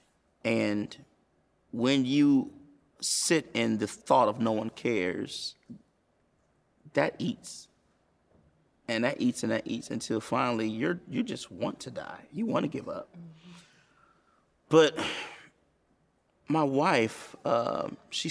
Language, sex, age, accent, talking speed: English, male, 30-49, American, 120 wpm